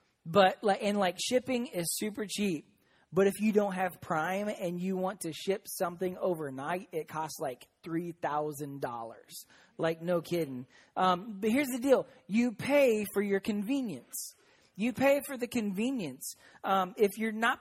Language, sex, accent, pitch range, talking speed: English, male, American, 175-215 Hz, 155 wpm